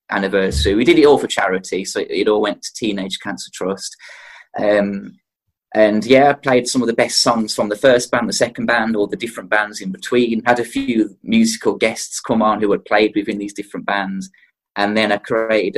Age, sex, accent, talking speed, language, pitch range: 20-39, male, British, 215 wpm, English, 100-125 Hz